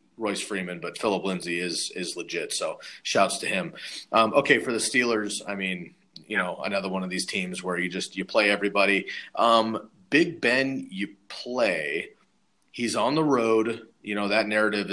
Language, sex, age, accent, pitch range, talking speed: English, male, 30-49, American, 95-110 Hz, 180 wpm